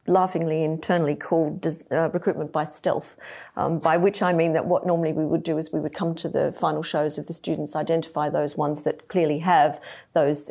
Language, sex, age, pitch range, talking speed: English, female, 40-59, 145-170 Hz, 210 wpm